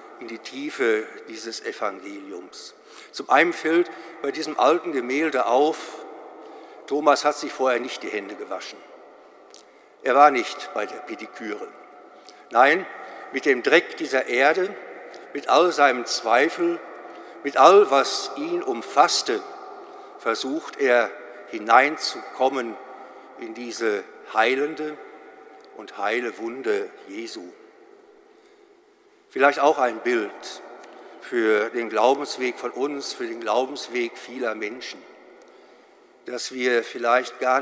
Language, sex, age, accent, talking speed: German, male, 60-79, German, 110 wpm